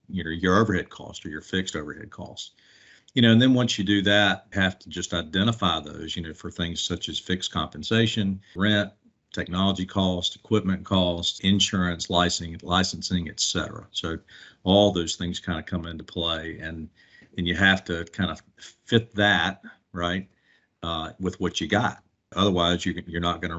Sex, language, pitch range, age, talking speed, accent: male, English, 85-95 Hz, 50-69, 175 wpm, American